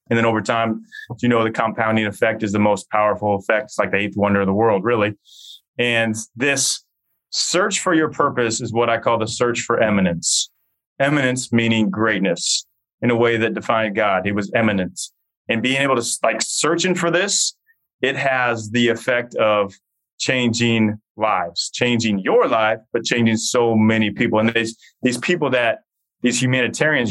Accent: American